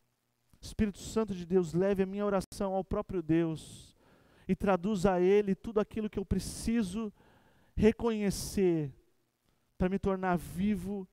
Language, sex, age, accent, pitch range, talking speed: Portuguese, male, 20-39, Brazilian, 150-200 Hz, 135 wpm